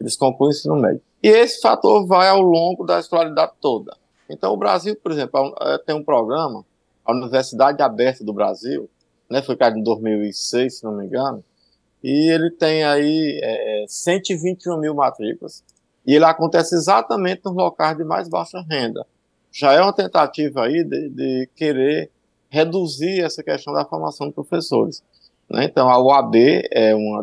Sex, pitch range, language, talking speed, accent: male, 110-170 Hz, Portuguese, 165 wpm, Brazilian